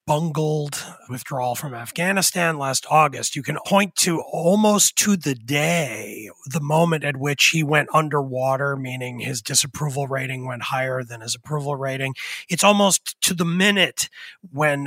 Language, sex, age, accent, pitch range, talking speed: English, male, 30-49, American, 135-175 Hz, 150 wpm